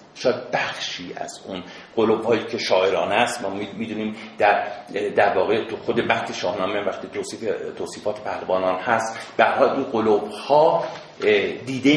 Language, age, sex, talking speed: Persian, 50-69, male, 125 wpm